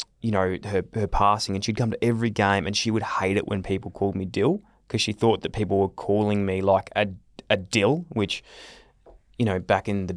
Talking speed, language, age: 230 wpm, English, 20-39